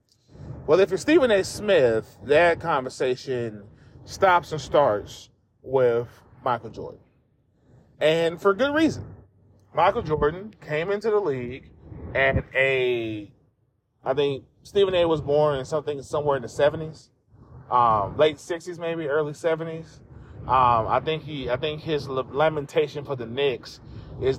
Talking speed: 140 wpm